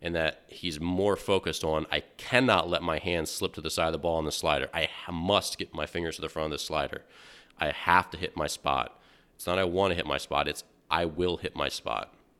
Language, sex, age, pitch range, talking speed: English, male, 30-49, 80-90 Hz, 250 wpm